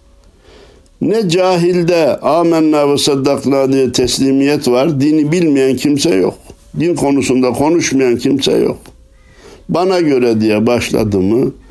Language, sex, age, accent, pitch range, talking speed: Turkish, male, 60-79, native, 95-130 Hz, 100 wpm